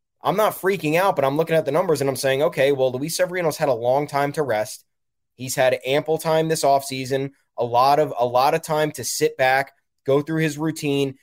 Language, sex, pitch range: English, male, 135-160 Hz